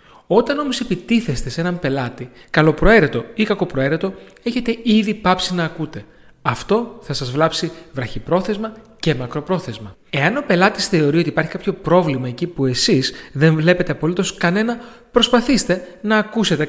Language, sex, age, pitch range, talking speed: Greek, male, 30-49, 145-210 Hz, 140 wpm